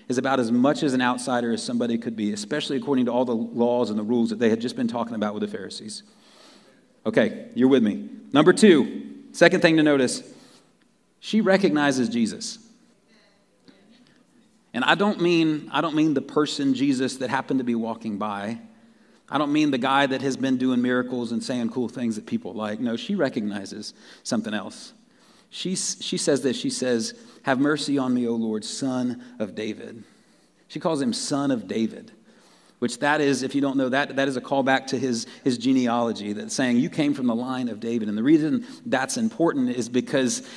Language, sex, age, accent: English, male, 40-59, American